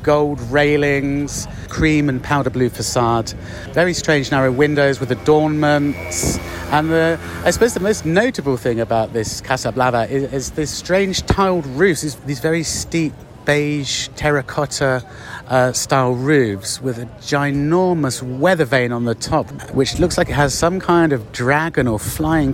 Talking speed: 155 wpm